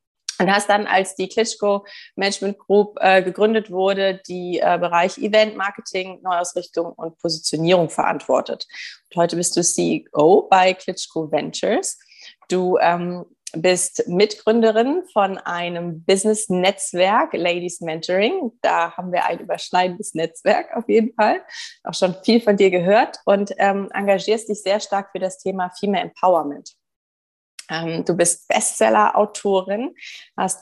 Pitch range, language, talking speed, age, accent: 175-215 Hz, German, 130 wpm, 20-39, German